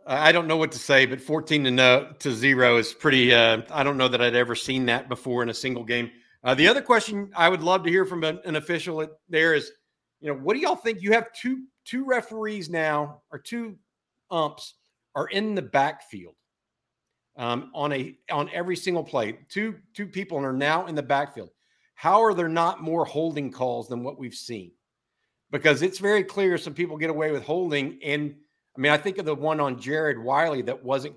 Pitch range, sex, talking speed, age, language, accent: 125-165 Hz, male, 215 wpm, 50-69, English, American